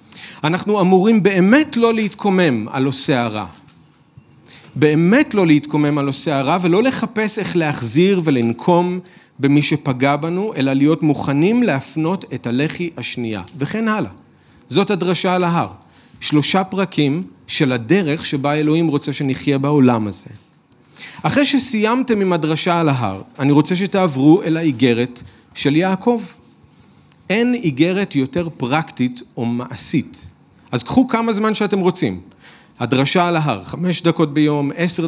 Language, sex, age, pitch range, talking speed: Hebrew, male, 40-59, 135-185 Hz, 130 wpm